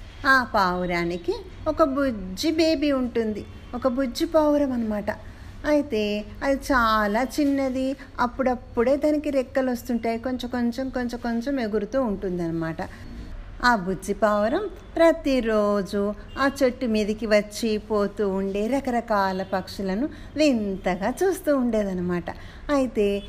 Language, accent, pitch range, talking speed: Telugu, native, 205-275 Hz, 100 wpm